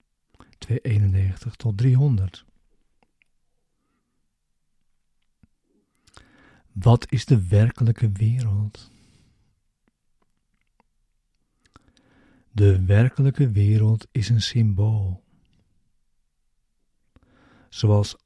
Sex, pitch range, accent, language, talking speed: male, 105-120 Hz, Dutch, Dutch, 50 wpm